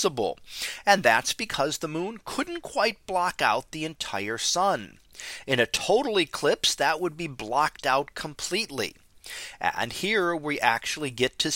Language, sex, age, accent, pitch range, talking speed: English, male, 40-59, American, 135-215 Hz, 145 wpm